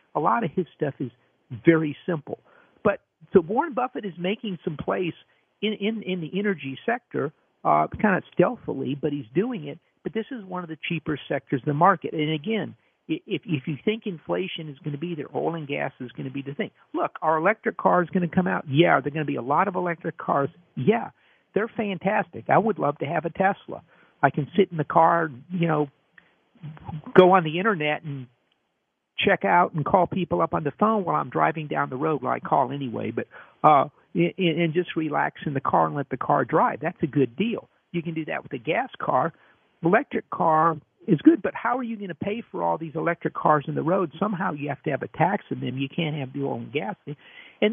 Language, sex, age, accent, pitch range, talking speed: English, male, 50-69, American, 150-195 Hz, 235 wpm